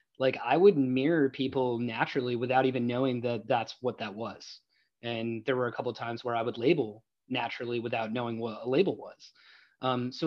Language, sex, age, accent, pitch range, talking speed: English, male, 30-49, American, 120-135 Hz, 200 wpm